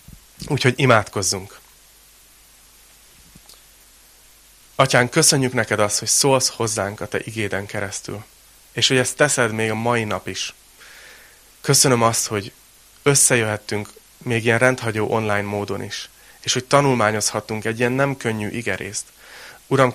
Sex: male